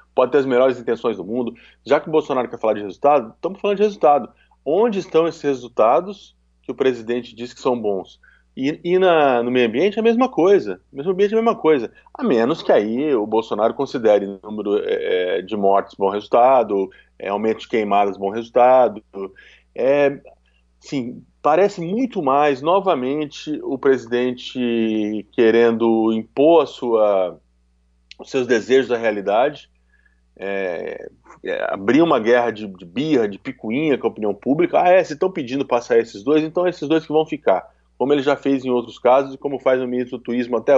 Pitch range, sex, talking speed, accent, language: 105-155 Hz, male, 190 wpm, Brazilian, Portuguese